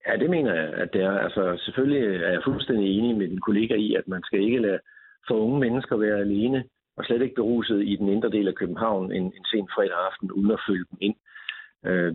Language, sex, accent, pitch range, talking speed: Danish, male, native, 100-130 Hz, 235 wpm